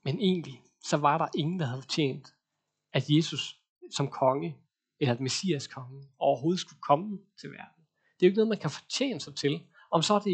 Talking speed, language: 205 wpm, Danish